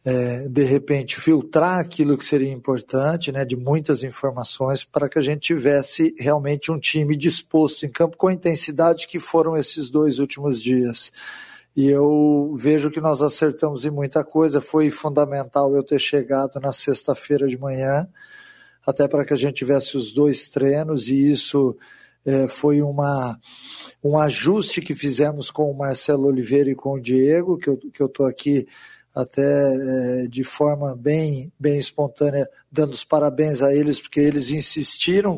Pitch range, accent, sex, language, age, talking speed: 140-155 Hz, Brazilian, male, Portuguese, 50-69, 165 wpm